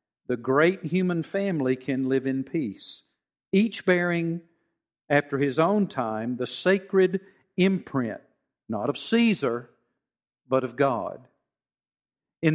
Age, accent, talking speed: 50-69, American, 115 wpm